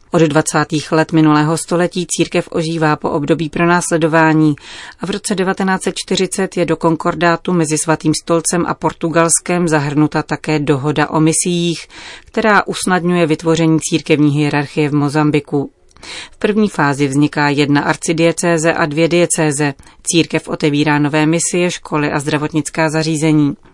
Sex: female